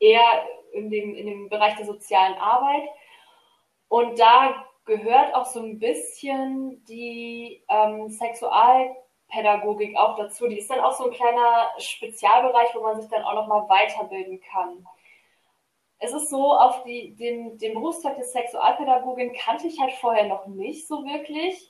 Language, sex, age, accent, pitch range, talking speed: German, female, 20-39, German, 210-255 Hz, 155 wpm